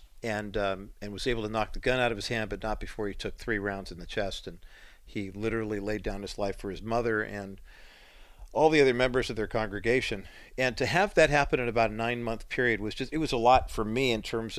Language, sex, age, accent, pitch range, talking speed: English, male, 50-69, American, 105-125 Hz, 250 wpm